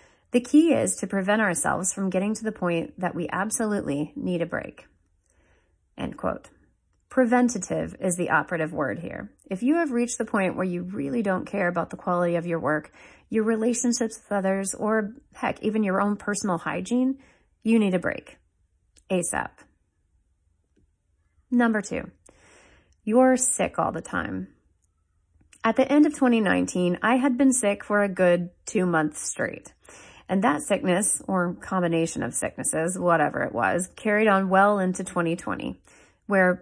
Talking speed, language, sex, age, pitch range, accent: 155 wpm, English, female, 30-49, 170-225 Hz, American